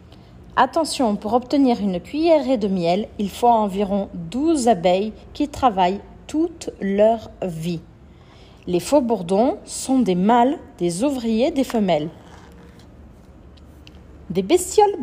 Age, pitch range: 40-59, 195-280 Hz